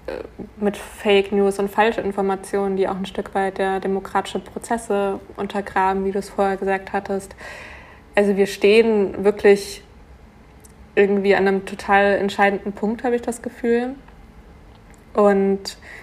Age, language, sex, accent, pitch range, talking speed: 20-39, German, female, German, 195-210 Hz, 130 wpm